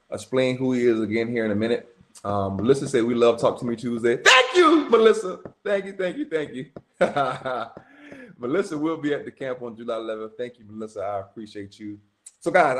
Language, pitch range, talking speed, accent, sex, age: English, 110-140 Hz, 205 wpm, American, male, 20-39